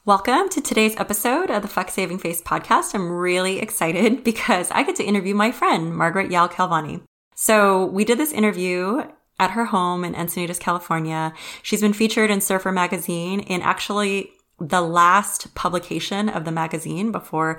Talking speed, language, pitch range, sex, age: 165 wpm, English, 170-205 Hz, female, 20-39